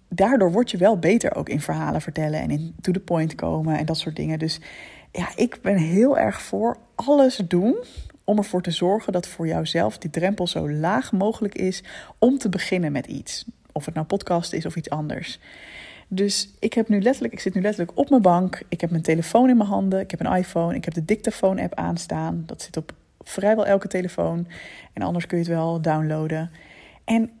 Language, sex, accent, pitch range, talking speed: Dutch, female, Dutch, 165-200 Hz, 210 wpm